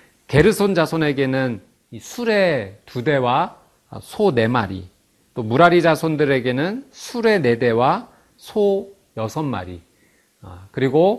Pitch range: 125-190 Hz